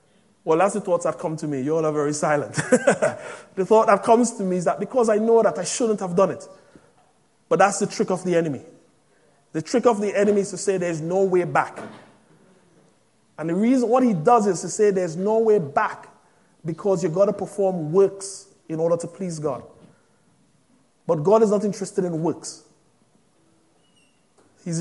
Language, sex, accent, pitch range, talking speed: English, male, Nigerian, 160-200 Hz, 195 wpm